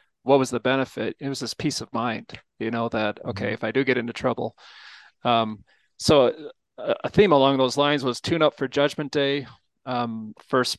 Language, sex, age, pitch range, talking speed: English, male, 30-49, 120-135 Hz, 200 wpm